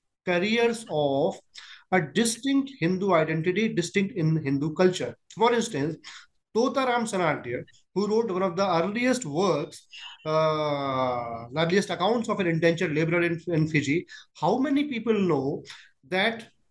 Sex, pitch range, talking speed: male, 165-225 Hz, 130 wpm